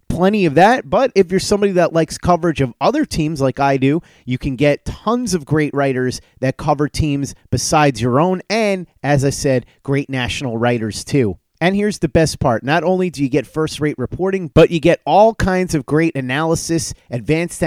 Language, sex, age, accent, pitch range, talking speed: English, male, 30-49, American, 135-180 Hz, 195 wpm